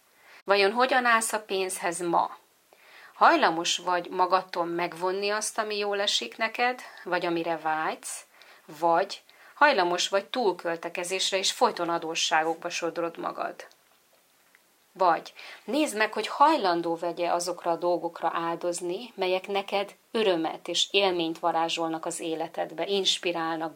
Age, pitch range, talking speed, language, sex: 30-49, 170-200 Hz, 115 wpm, Hungarian, female